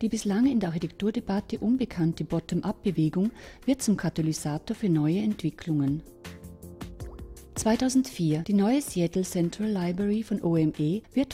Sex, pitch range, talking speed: female, 155-210 Hz, 115 wpm